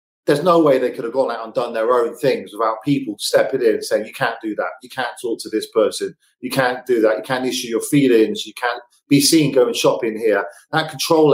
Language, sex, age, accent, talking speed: English, male, 40-59, British, 250 wpm